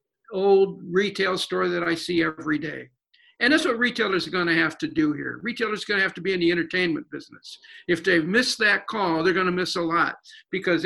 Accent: American